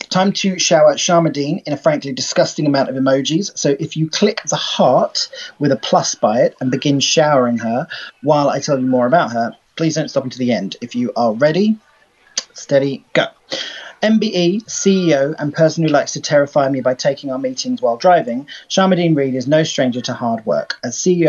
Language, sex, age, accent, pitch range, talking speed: English, male, 30-49, British, 130-215 Hz, 195 wpm